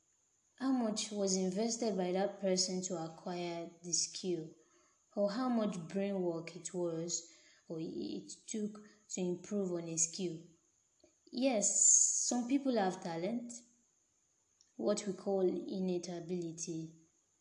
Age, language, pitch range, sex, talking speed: 20-39, English, 175-220 Hz, female, 125 wpm